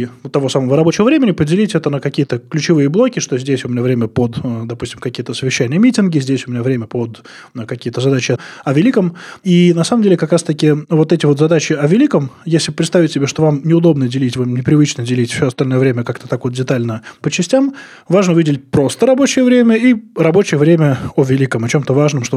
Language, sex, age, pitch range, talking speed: Russian, male, 20-39, 125-165 Hz, 205 wpm